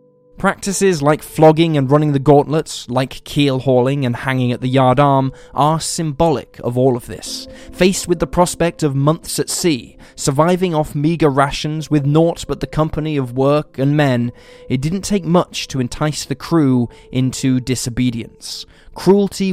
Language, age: English, 10-29